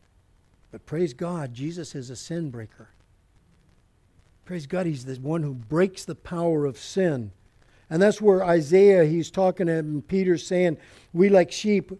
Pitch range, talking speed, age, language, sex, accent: 115-170 Hz, 155 wpm, 60-79, English, male, American